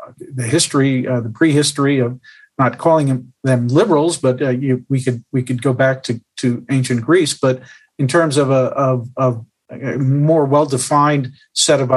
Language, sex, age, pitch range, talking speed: English, male, 50-69, 130-160 Hz, 180 wpm